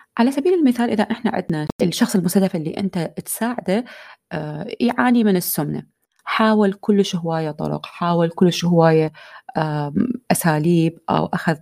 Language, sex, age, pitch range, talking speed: Arabic, female, 30-49, 165-225 Hz, 125 wpm